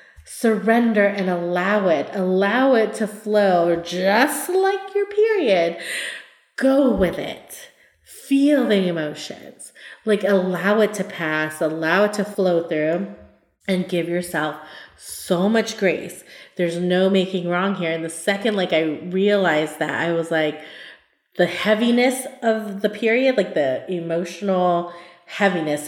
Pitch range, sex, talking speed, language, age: 175-235 Hz, female, 135 wpm, English, 30-49